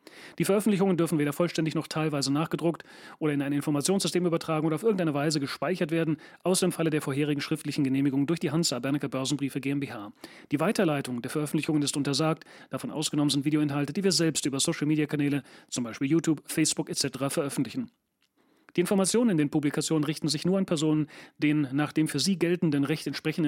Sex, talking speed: male, 180 wpm